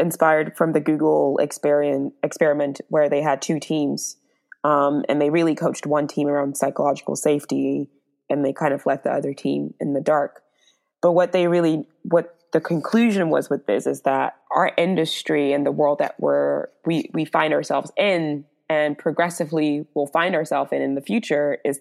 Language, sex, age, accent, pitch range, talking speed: English, female, 20-39, American, 145-175 Hz, 180 wpm